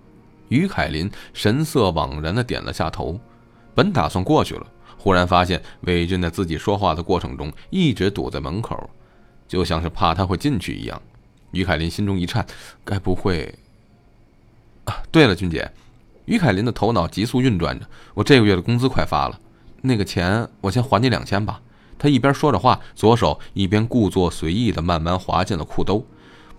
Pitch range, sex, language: 90-115 Hz, male, Chinese